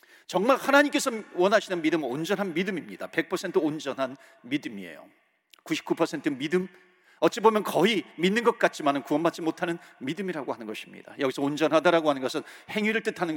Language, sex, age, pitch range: Korean, male, 40-59, 155-220 Hz